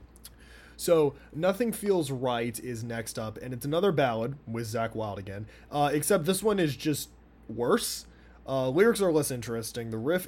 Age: 20-39